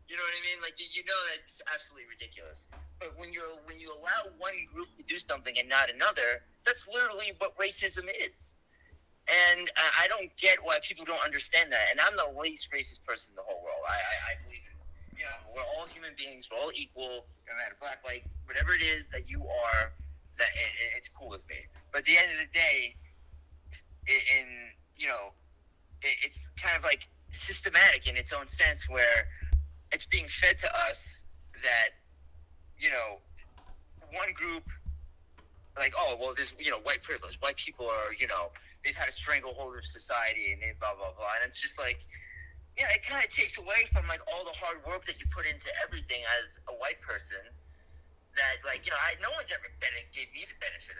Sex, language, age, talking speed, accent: male, English, 30-49, 205 wpm, American